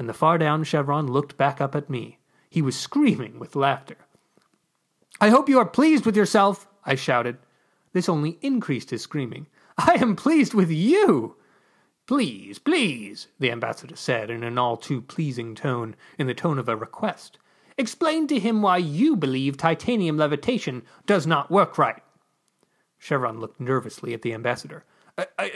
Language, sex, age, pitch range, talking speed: English, male, 30-49, 140-235 Hz, 155 wpm